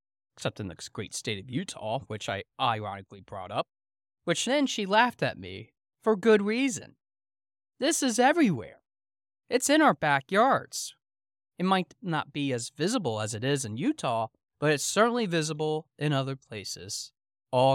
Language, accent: English, American